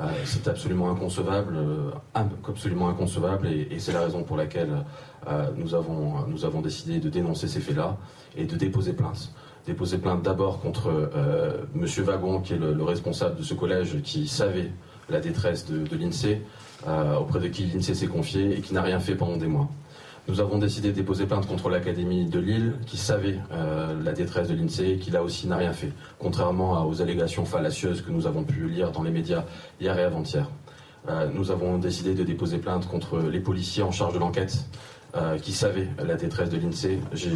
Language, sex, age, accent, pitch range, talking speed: French, male, 30-49, French, 90-115 Hz, 200 wpm